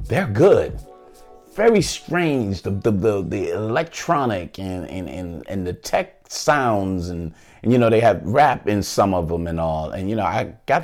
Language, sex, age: English, male, 30-49